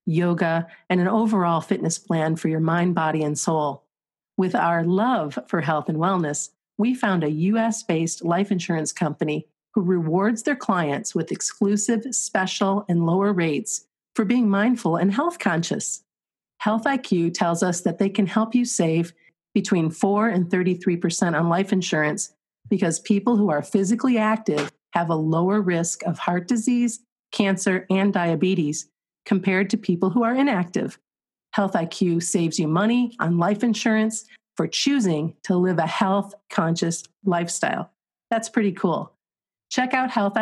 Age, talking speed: 40-59, 155 wpm